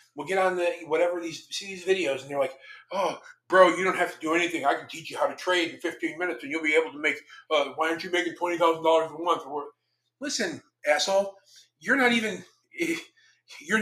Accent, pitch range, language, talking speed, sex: American, 160-205 Hz, English, 225 wpm, male